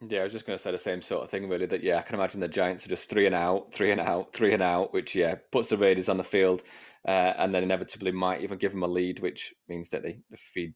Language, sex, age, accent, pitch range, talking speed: English, male, 30-49, British, 100-140 Hz, 300 wpm